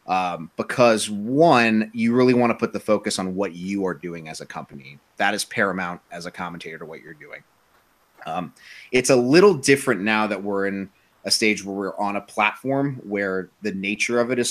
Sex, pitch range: male, 95-125 Hz